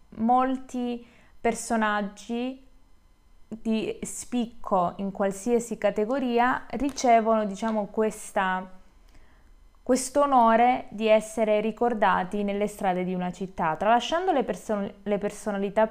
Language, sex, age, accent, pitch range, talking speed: Italian, female, 20-39, native, 195-235 Hz, 85 wpm